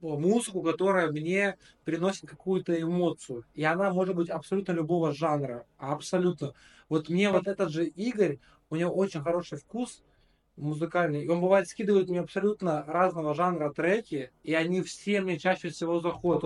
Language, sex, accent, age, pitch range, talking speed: Russian, male, native, 20-39, 145-190 Hz, 155 wpm